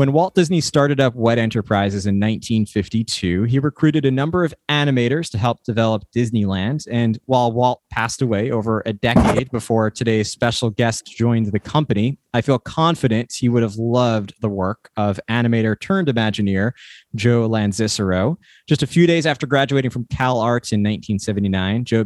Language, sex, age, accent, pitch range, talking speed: English, male, 20-39, American, 110-135 Hz, 160 wpm